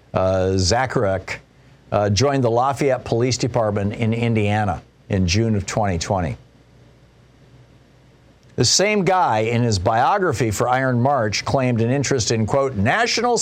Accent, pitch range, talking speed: American, 115-145 Hz, 125 wpm